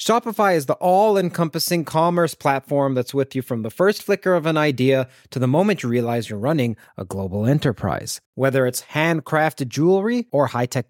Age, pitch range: 30-49, 125-165 Hz